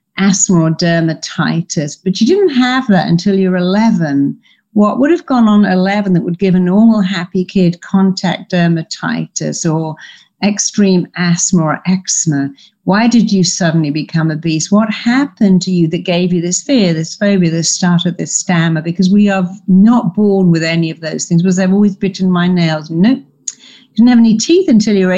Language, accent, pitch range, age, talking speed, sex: English, British, 175-230 Hz, 50-69, 185 wpm, female